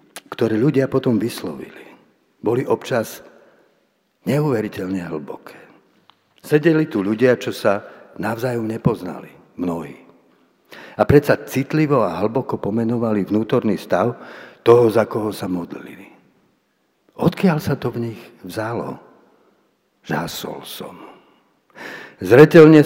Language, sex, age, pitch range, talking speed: Slovak, male, 60-79, 105-130 Hz, 100 wpm